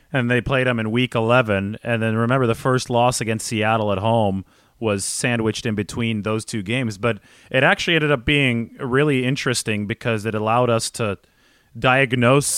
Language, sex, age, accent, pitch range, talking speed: English, male, 30-49, American, 110-140 Hz, 180 wpm